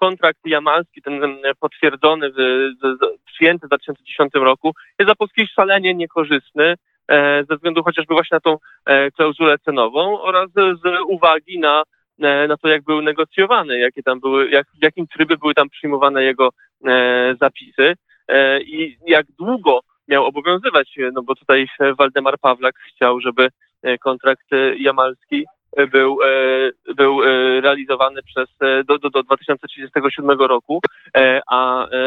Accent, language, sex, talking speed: native, Polish, male, 125 wpm